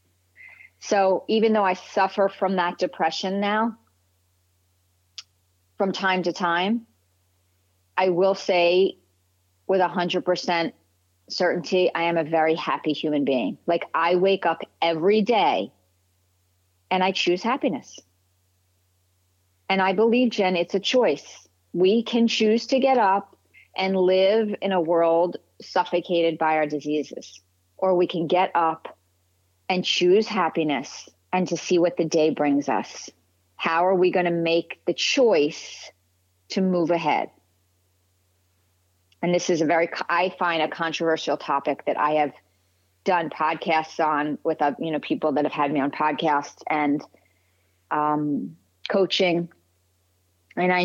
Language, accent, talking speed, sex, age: English, American, 140 wpm, female, 40-59